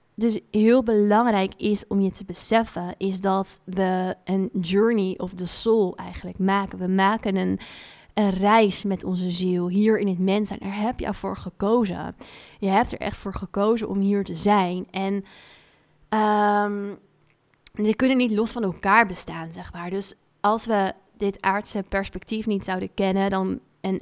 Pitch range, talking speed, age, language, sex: 190-215 Hz, 170 wpm, 20-39, Dutch, female